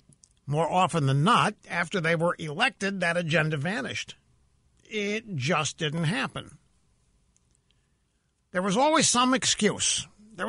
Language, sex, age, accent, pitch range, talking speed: English, male, 60-79, American, 150-250 Hz, 120 wpm